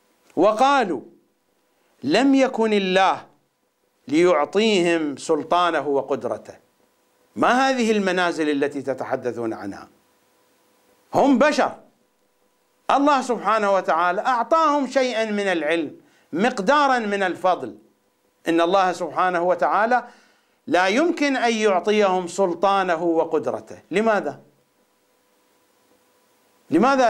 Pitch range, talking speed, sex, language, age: 150-230 Hz, 80 wpm, male, English, 50-69